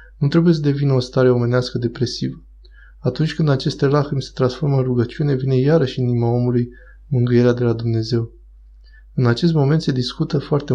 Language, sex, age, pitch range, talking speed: Romanian, male, 20-39, 120-135 Hz, 175 wpm